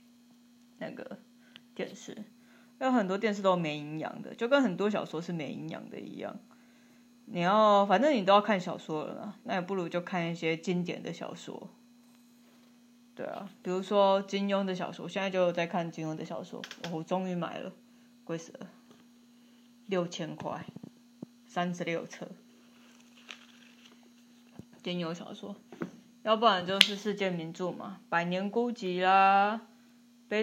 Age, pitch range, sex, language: 20-39, 180-240 Hz, female, Chinese